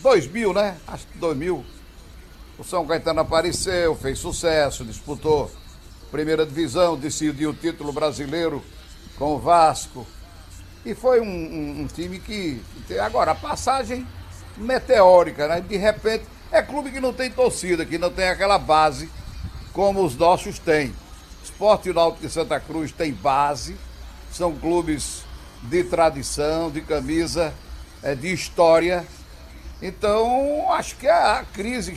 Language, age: Portuguese, 60-79